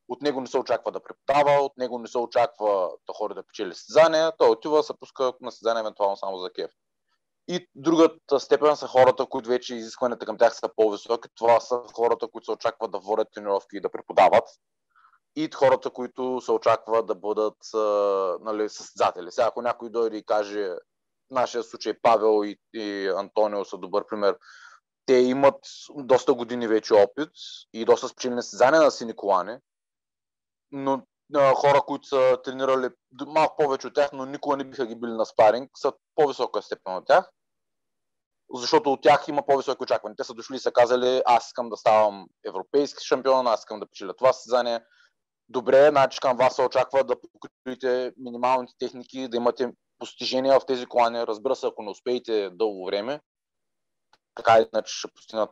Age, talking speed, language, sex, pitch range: 30-49, 175 wpm, Bulgarian, male, 115-140 Hz